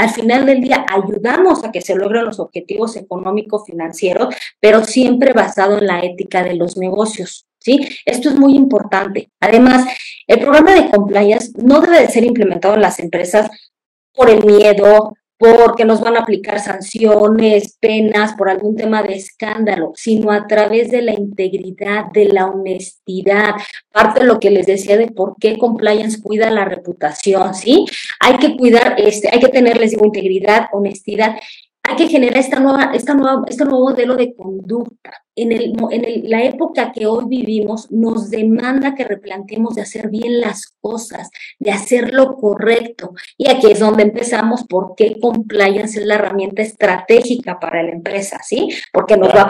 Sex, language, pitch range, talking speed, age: female, Spanish, 200-245 Hz, 170 wpm, 20-39